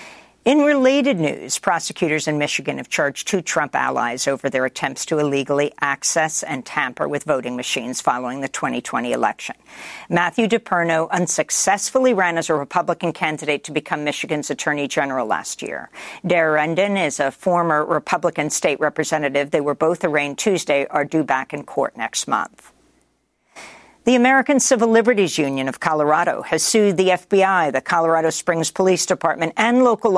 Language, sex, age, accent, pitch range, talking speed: English, female, 50-69, American, 160-220 Hz, 155 wpm